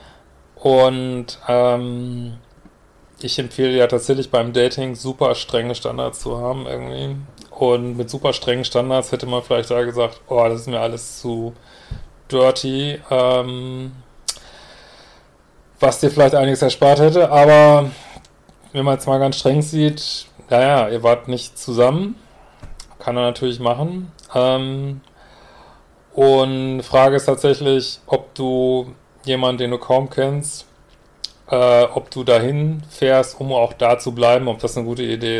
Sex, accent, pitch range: male, German, 115-135 Hz